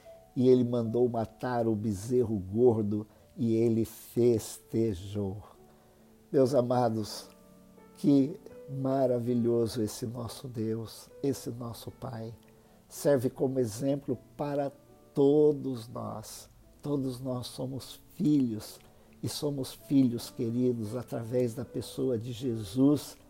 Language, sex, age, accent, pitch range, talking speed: Portuguese, male, 60-79, Brazilian, 110-135 Hz, 100 wpm